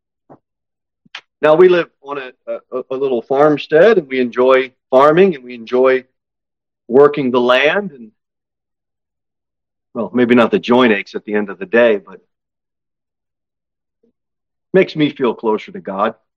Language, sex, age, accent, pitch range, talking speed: English, male, 40-59, American, 105-140 Hz, 145 wpm